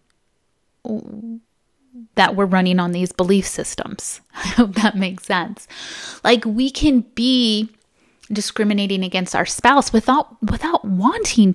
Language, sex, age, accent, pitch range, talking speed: English, female, 30-49, American, 190-240 Hz, 120 wpm